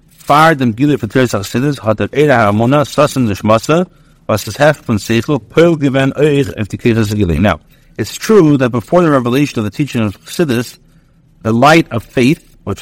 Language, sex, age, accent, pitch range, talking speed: English, male, 60-79, American, 110-150 Hz, 80 wpm